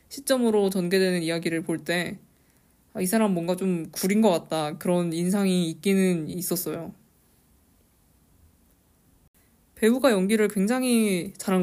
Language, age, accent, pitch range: Korean, 20-39, native, 155-230 Hz